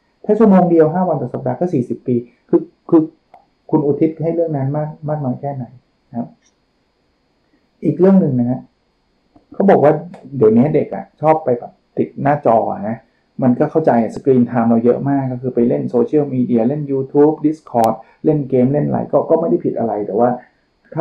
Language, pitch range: Thai, 120-155 Hz